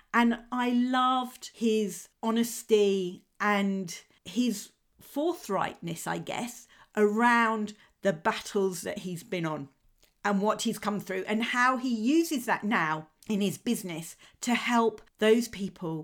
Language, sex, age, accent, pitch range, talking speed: English, female, 40-59, British, 185-235 Hz, 130 wpm